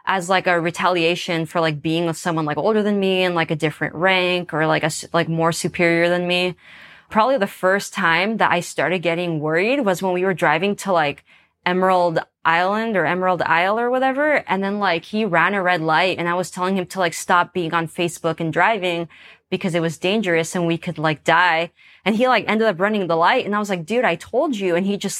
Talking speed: 235 wpm